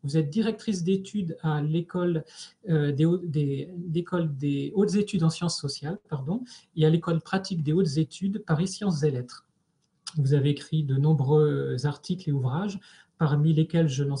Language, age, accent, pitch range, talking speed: French, 30-49, French, 150-180 Hz, 170 wpm